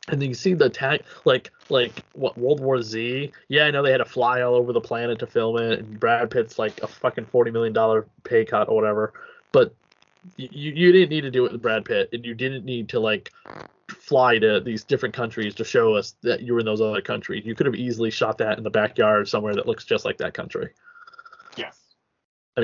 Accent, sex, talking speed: American, male, 230 wpm